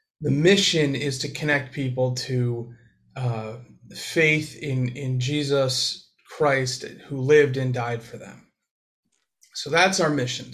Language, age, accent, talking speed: English, 30-49, American, 130 wpm